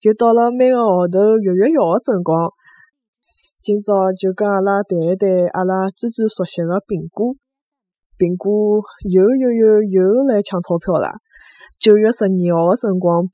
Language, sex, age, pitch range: Chinese, female, 20-39, 180-220 Hz